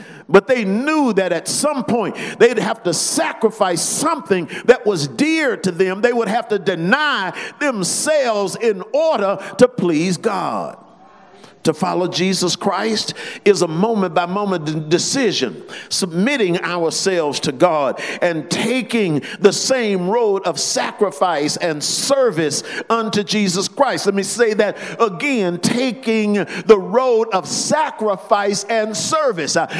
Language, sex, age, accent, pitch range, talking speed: English, male, 50-69, American, 200-245 Hz, 135 wpm